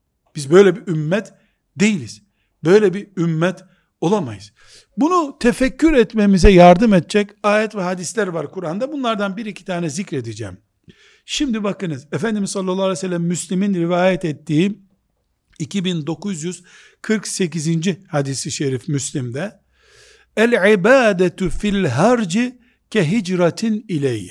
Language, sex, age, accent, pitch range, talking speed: Turkish, male, 60-79, native, 140-200 Hz, 95 wpm